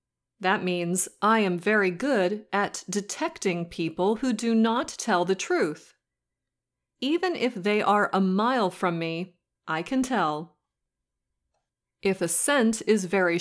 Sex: female